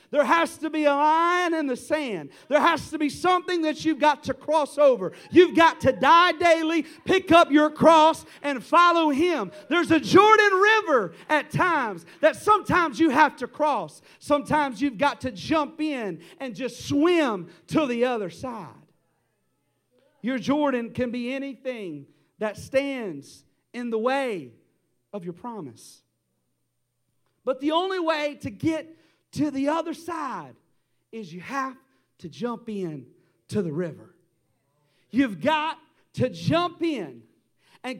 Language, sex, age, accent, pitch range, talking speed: English, male, 40-59, American, 245-330 Hz, 150 wpm